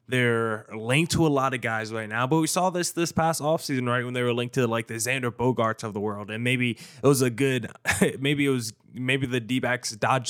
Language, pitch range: English, 120-145 Hz